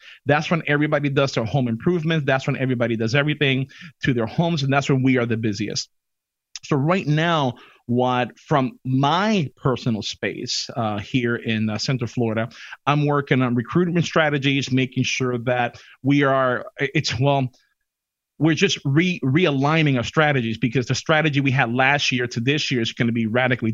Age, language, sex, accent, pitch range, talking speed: 30-49, English, male, American, 125-155 Hz, 170 wpm